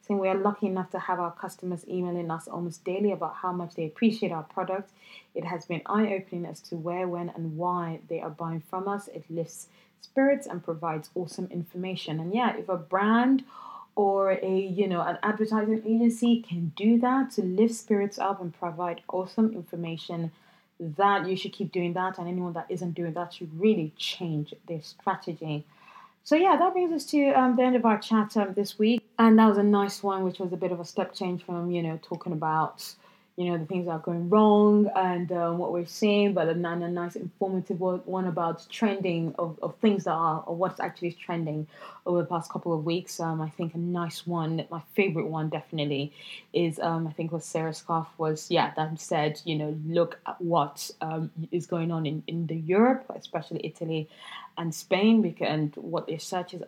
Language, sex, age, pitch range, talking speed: English, female, 20-39, 165-200 Hz, 205 wpm